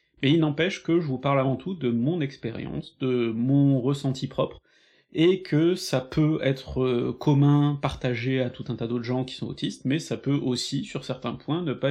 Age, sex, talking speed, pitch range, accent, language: 30-49, male, 205 wpm, 125-145 Hz, French, French